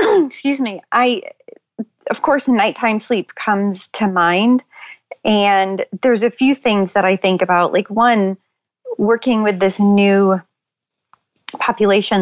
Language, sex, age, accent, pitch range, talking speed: English, female, 30-49, American, 180-220 Hz, 130 wpm